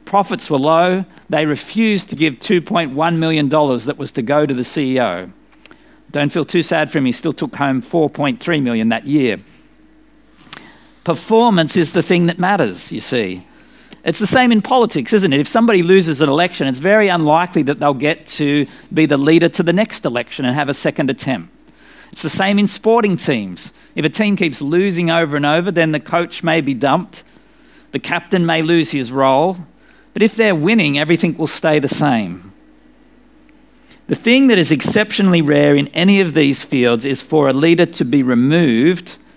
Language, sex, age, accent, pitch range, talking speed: English, male, 50-69, Australian, 145-205 Hz, 185 wpm